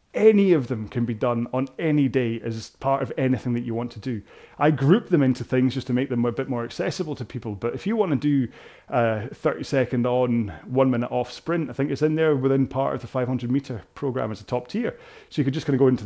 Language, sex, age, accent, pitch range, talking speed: English, male, 30-49, British, 120-150 Hz, 260 wpm